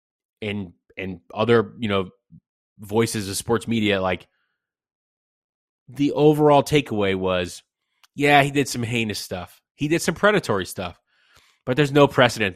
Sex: male